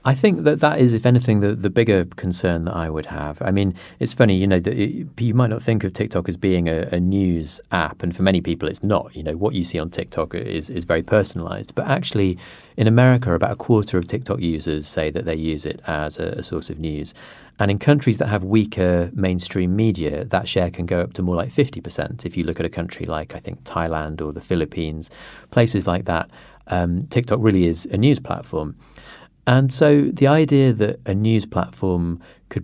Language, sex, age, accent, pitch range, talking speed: English, male, 30-49, British, 85-110 Hz, 220 wpm